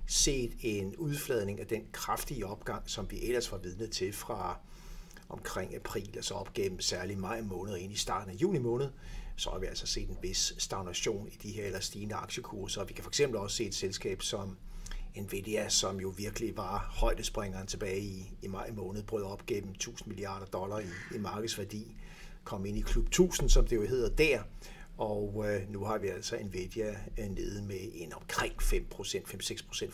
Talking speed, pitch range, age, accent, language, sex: 190 wpm, 95-115 Hz, 60-79, native, Danish, male